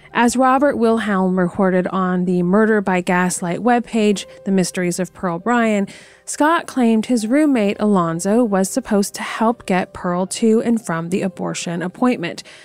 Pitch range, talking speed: 175-225 Hz, 150 wpm